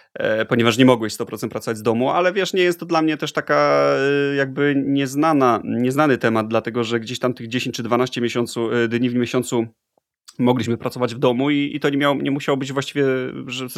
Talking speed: 205 wpm